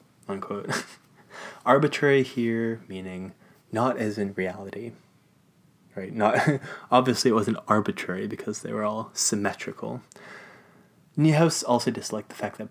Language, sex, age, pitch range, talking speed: English, male, 20-39, 105-135 Hz, 120 wpm